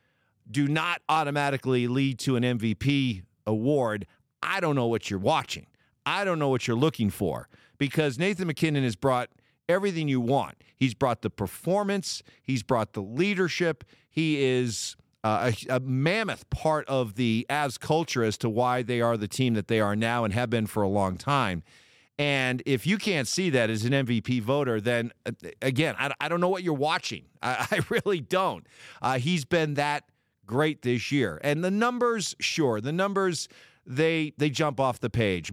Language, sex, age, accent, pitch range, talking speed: English, male, 50-69, American, 115-155 Hz, 180 wpm